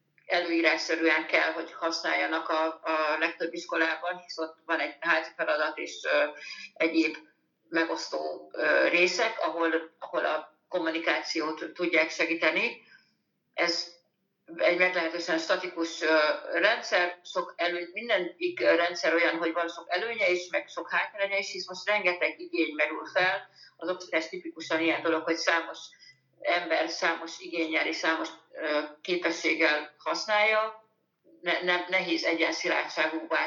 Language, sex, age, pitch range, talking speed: Hungarian, female, 50-69, 160-185 Hz, 125 wpm